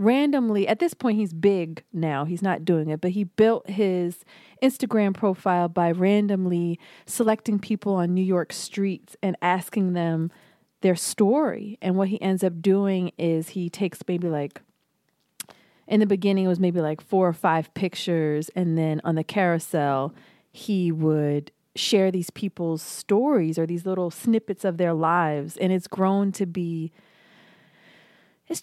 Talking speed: 160 wpm